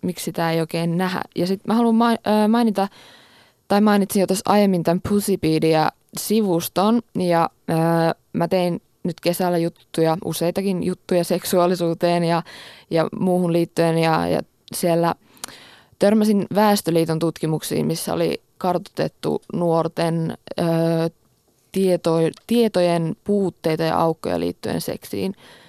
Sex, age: female, 20-39